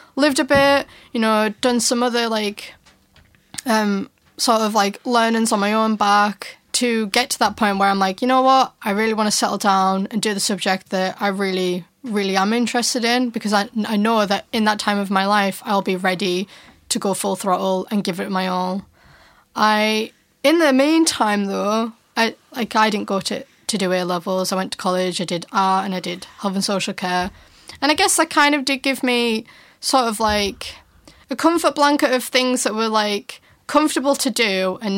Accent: British